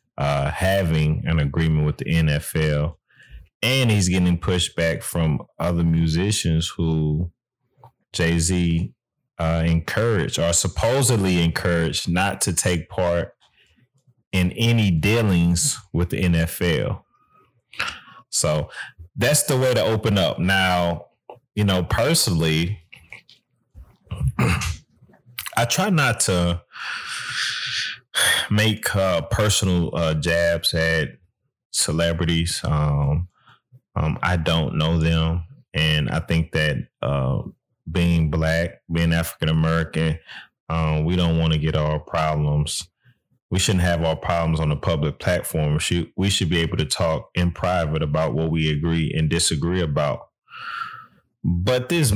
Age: 30-49